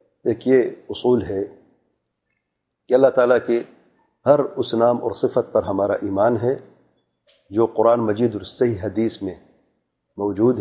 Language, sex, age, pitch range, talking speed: English, male, 40-59, 115-145 Hz, 140 wpm